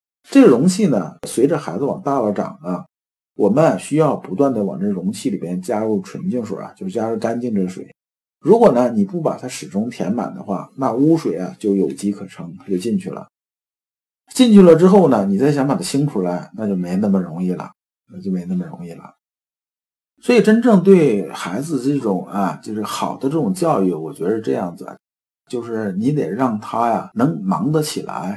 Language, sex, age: Chinese, male, 50-69